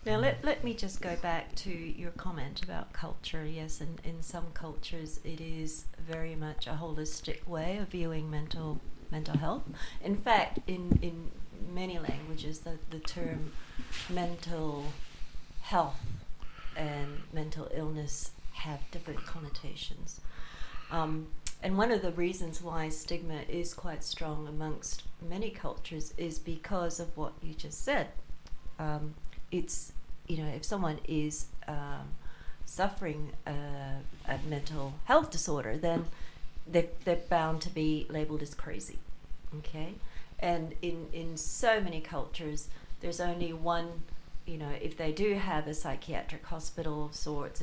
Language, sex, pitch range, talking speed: English, female, 150-170 Hz, 140 wpm